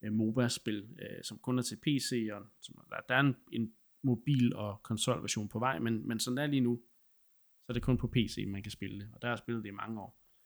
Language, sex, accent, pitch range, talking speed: Danish, male, native, 110-125 Hz, 235 wpm